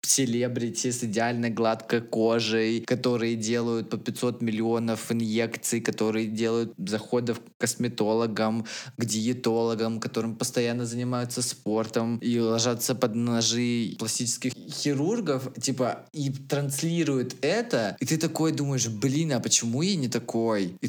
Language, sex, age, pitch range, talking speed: Russian, male, 20-39, 105-125 Hz, 125 wpm